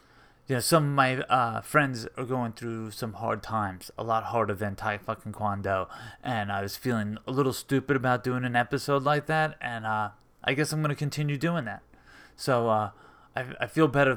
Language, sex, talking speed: English, male, 210 wpm